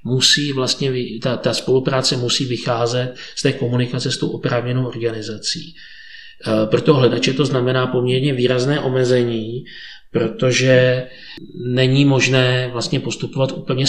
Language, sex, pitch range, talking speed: Czech, male, 120-130 Hz, 115 wpm